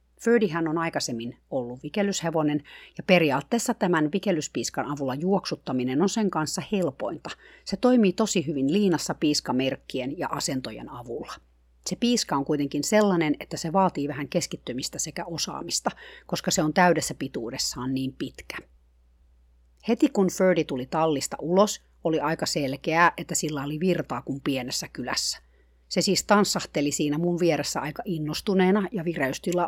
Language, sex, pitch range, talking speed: Finnish, female, 140-190 Hz, 140 wpm